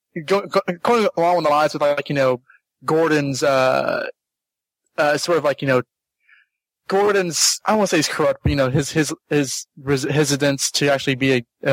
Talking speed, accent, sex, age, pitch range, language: 180 wpm, American, male, 20-39, 135-160 Hz, English